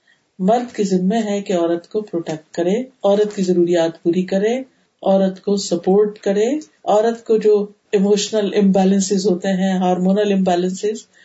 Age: 50-69